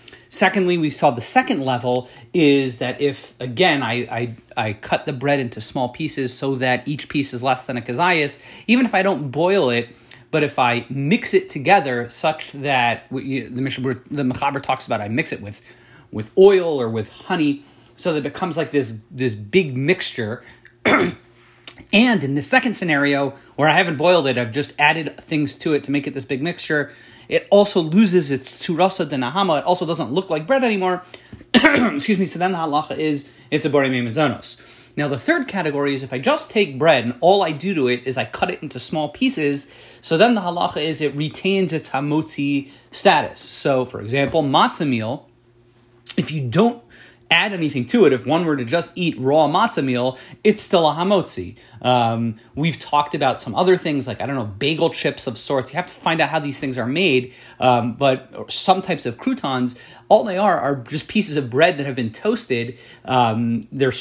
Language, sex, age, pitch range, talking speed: English, male, 30-49, 125-175 Hz, 200 wpm